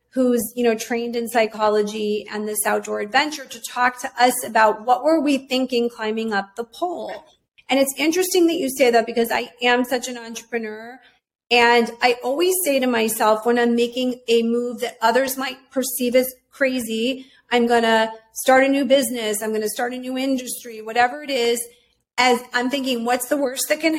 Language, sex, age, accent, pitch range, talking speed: English, female, 40-59, American, 230-285 Hz, 190 wpm